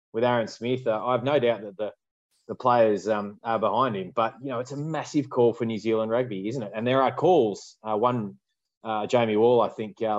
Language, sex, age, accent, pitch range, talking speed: English, male, 20-39, Australian, 105-120 Hz, 240 wpm